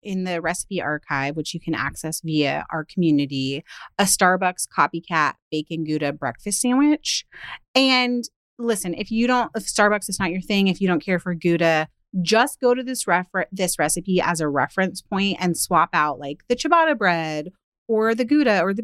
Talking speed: 185 wpm